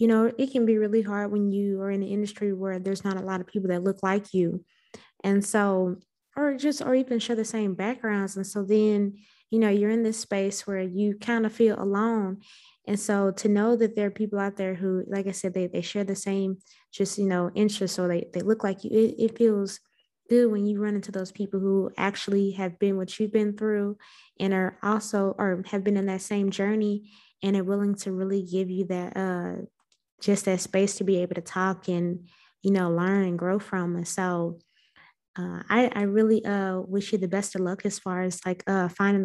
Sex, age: female, 20-39